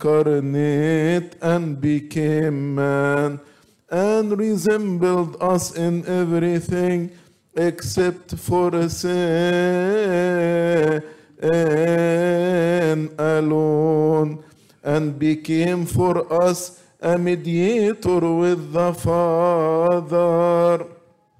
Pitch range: 155-180 Hz